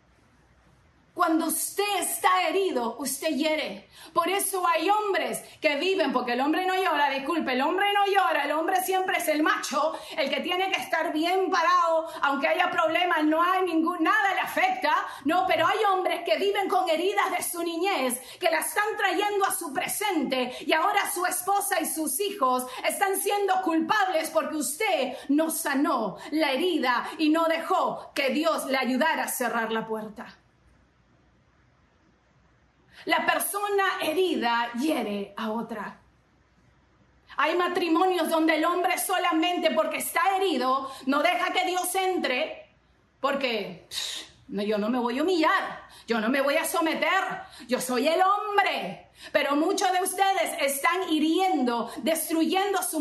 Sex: female